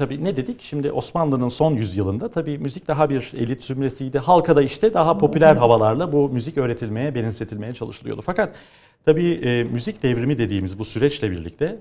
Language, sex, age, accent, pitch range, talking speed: Turkish, male, 40-59, native, 105-145 Hz, 170 wpm